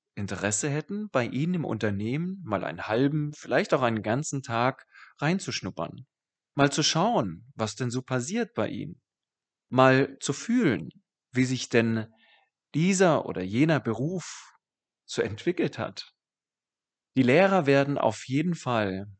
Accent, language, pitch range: German, German, 110-150 Hz